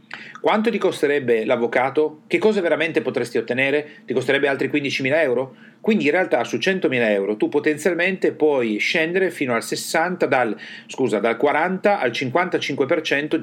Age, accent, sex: 40-59, native, male